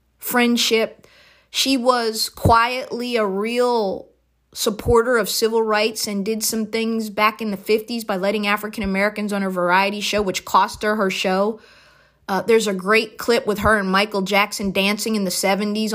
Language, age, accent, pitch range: English, 30-49, American, 190-230 Hz